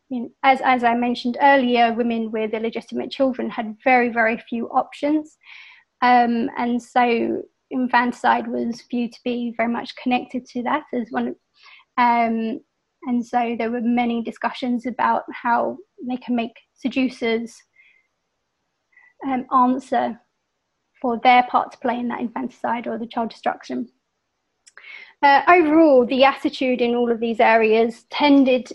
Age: 30-49